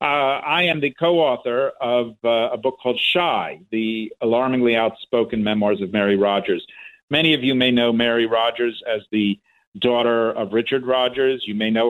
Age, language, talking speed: 50-69, English, 170 wpm